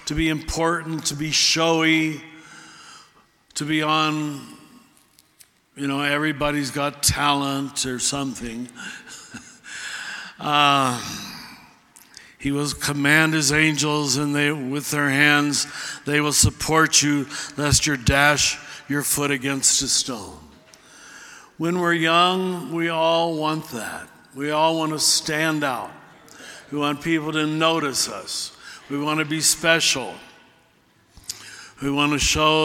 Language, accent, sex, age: English, American, male, 60-79